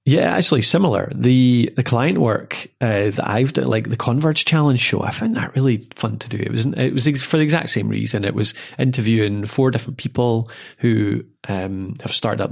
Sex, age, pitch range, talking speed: male, 20-39, 105-130 Hz, 210 wpm